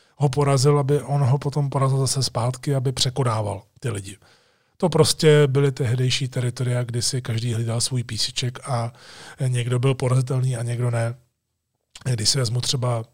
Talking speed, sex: 160 wpm, male